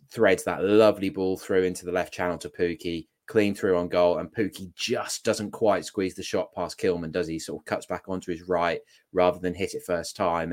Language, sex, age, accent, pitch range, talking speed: English, male, 20-39, British, 90-100 Hz, 230 wpm